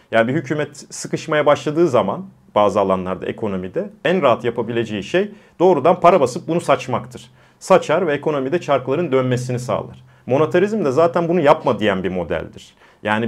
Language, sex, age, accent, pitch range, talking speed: Turkish, male, 40-59, native, 120-155 Hz, 150 wpm